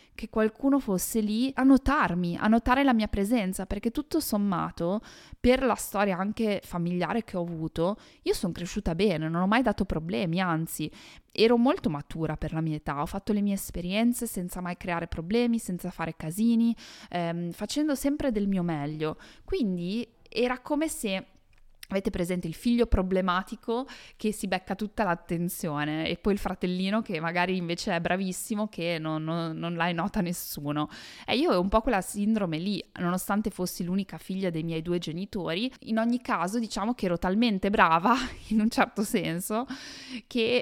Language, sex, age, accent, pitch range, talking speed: Italian, female, 20-39, native, 175-230 Hz, 170 wpm